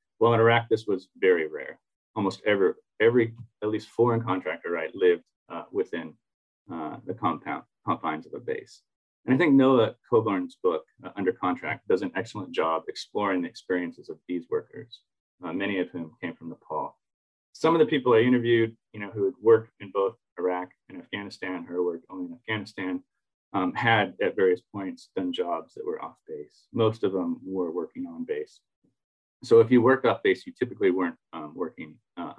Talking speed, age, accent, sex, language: 190 wpm, 30-49, American, male, English